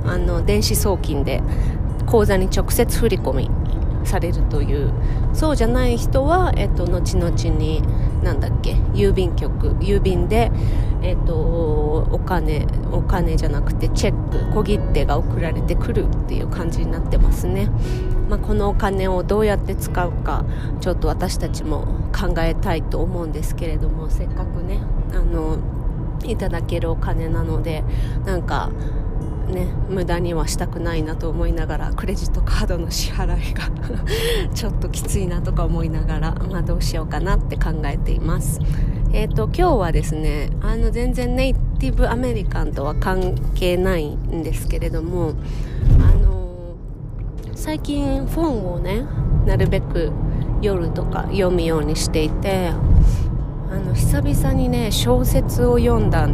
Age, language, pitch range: 30-49, Japanese, 105-135 Hz